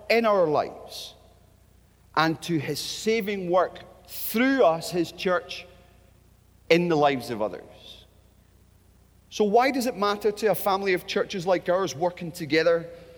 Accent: British